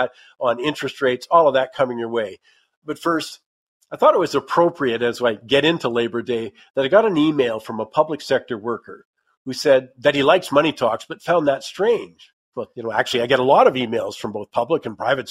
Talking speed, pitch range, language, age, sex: 225 wpm, 130-165 Hz, English, 50-69, male